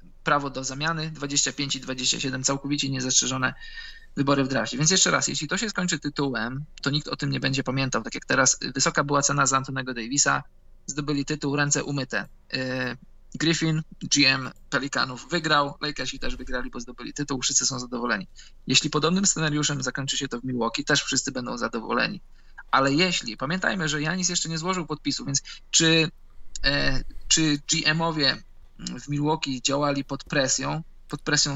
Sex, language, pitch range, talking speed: male, Polish, 135-155 Hz, 160 wpm